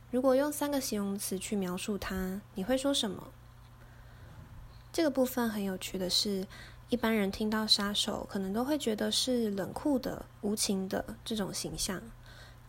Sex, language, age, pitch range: female, Chinese, 10-29, 190-240 Hz